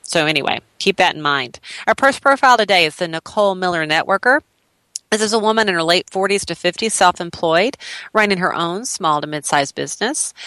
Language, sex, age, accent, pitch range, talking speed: English, female, 40-59, American, 160-195 Hz, 190 wpm